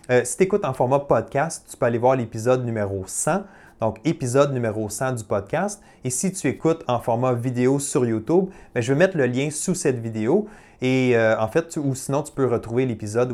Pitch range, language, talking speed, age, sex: 120-155 Hz, French, 220 wpm, 30-49, male